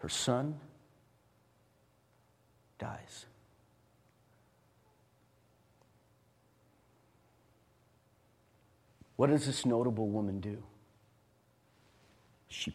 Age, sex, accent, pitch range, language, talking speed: 50-69, male, American, 105-135 Hz, English, 45 wpm